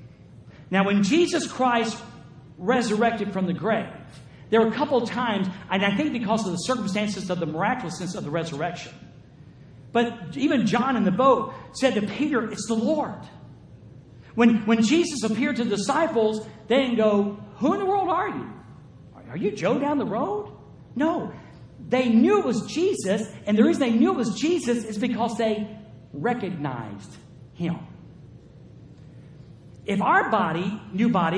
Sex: male